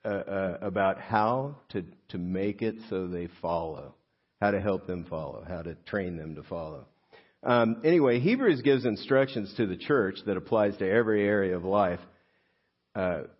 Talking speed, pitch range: 170 wpm, 90-115 Hz